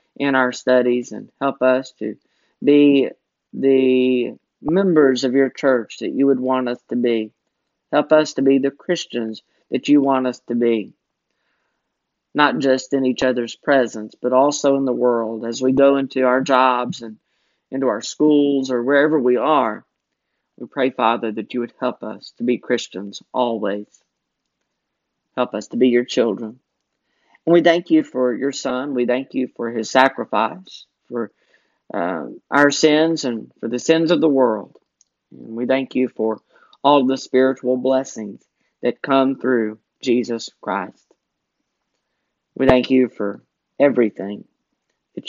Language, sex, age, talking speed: English, male, 40-59, 155 wpm